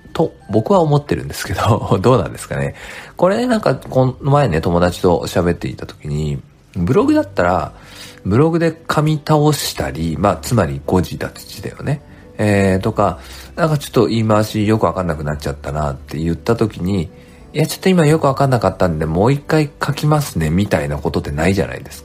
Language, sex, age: Japanese, male, 40-59